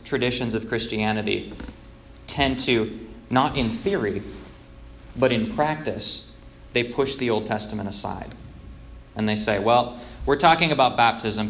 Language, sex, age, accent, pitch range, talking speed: English, male, 20-39, American, 105-125 Hz, 130 wpm